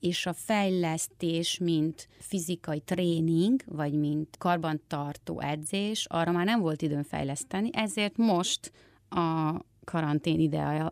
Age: 30-49